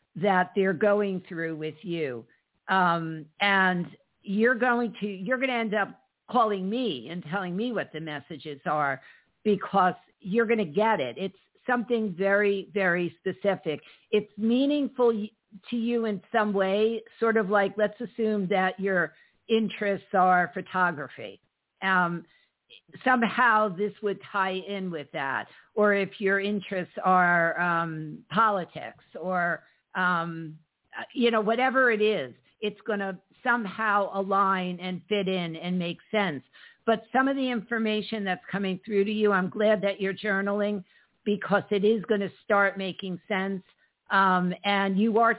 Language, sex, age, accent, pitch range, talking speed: English, female, 50-69, American, 180-215 Hz, 150 wpm